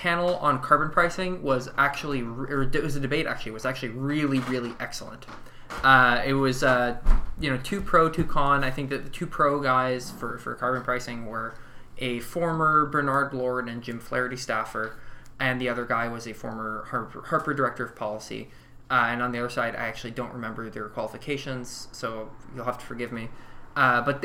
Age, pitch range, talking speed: 20-39, 120-145 Hz, 195 wpm